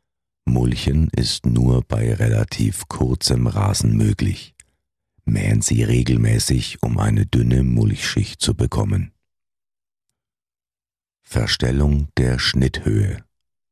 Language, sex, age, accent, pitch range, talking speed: German, male, 60-79, German, 65-110 Hz, 90 wpm